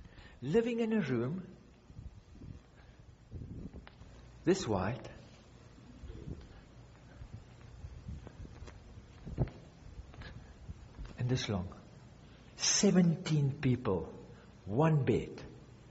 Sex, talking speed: male, 50 wpm